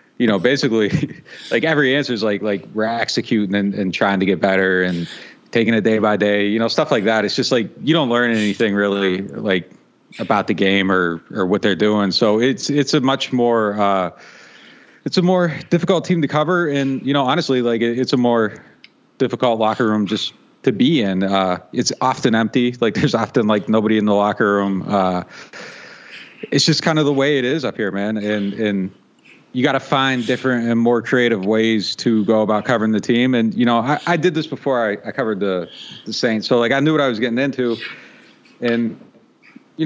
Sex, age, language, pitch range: male, 30-49, English, 100-130 Hz